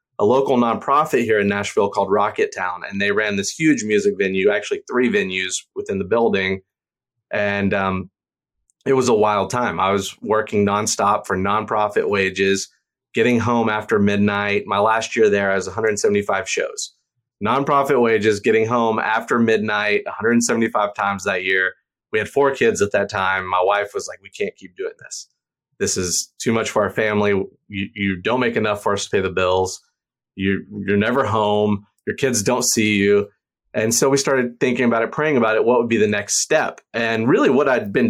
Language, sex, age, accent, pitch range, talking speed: English, male, 30-49, American, 100-135 Hz, 190 wpm